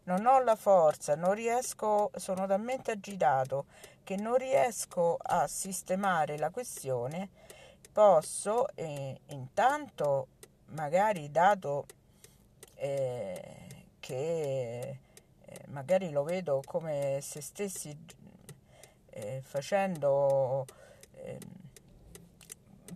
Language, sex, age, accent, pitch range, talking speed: Italian, female, 50-69, native, 140-195 Hz, 85 wpm